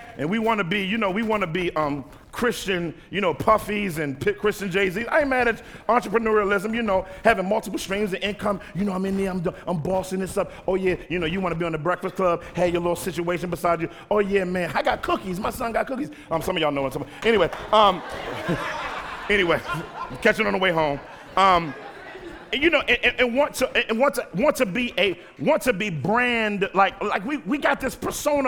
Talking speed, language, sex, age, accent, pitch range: 230 wpm, English, male, 40-59, American, 180-230 Hz